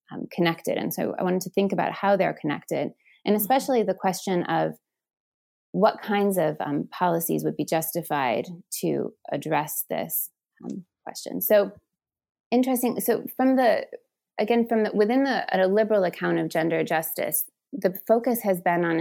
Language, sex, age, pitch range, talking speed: English, female, 20-39, 165-210 Hz, 155 wpm